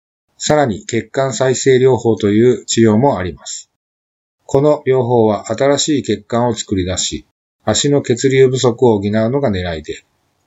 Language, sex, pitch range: Japanese, male, 100-130 Hz